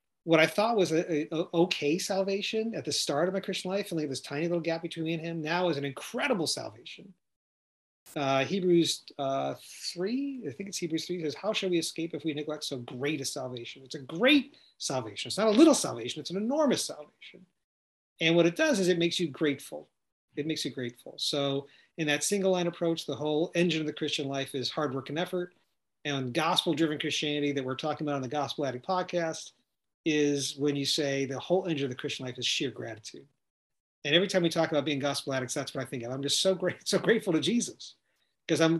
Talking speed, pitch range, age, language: 225 wpm, 140-175 Hz, 40-59, English